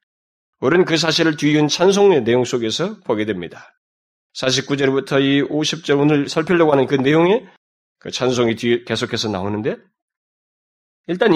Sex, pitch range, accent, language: male, 130-200 Hz, native, Korean